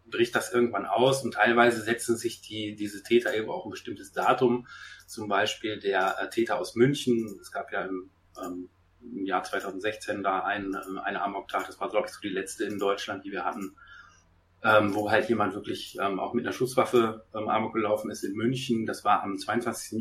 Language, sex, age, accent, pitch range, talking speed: German, male, 30-49, German, 105-135 Hz, 200 wpm